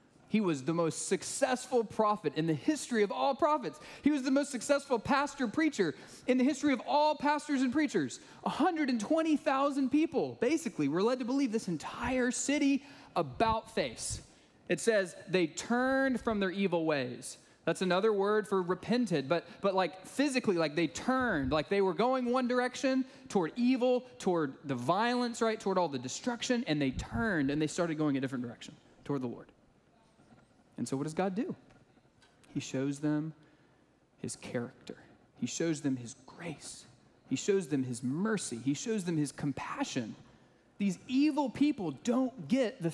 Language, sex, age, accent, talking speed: English, male, 20-39, American, 170 wpm